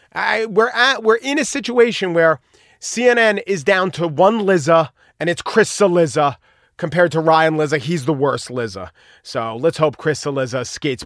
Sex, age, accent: male, 40-59, American